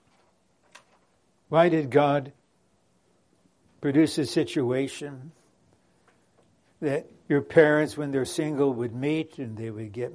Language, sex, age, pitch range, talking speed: English, male, 60-79, 125-160 Hz, 105 wpm